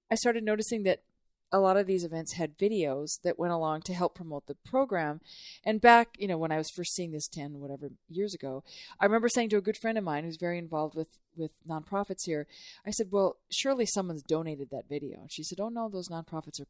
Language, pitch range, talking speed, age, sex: English, 160-210 Hz, 235 wpm, 40-59, female